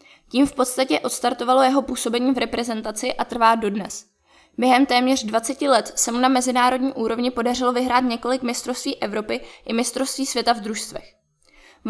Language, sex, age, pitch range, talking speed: Czech, female, 20-39, 230-260 Hz, 155 wpm